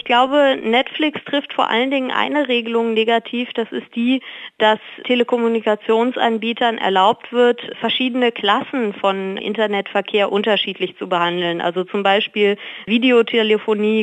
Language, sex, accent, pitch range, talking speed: German, female, German, 200-235 Hz, 120 wpm